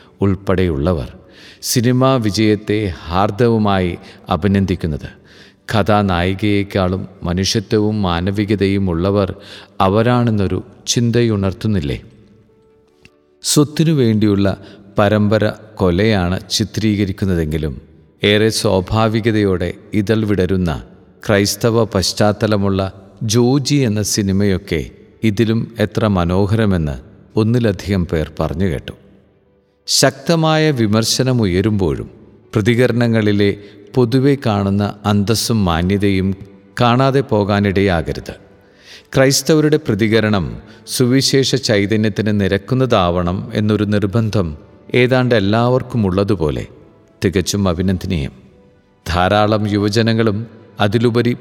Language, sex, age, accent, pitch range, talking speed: Malayalam, male, 50-69, native, 95-115 Hz, 65 wpm